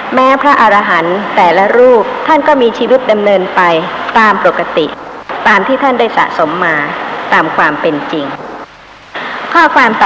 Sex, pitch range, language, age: male, 195-265 Hz, Thai, 60-79